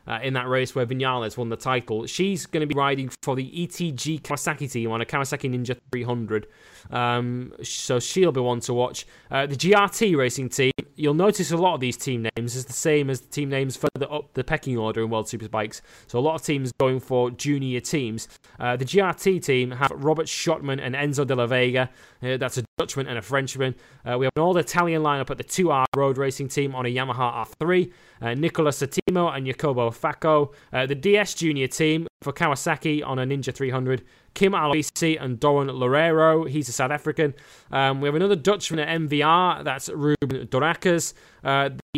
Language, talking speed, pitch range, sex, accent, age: English, 200 wpm, 130-160 Hz, male, British, 20-39